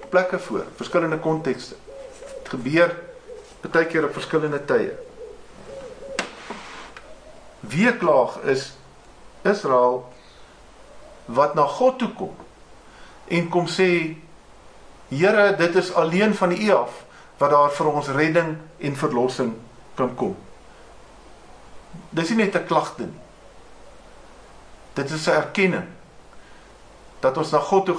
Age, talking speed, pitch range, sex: 50-69, 110 wpm, 150-185 Hz, male